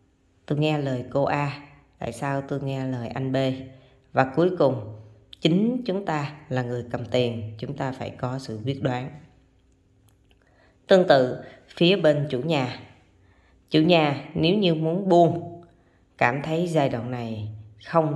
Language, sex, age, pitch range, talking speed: Vietnamese, female, 20-39, 115-150 Hz, 155 wpm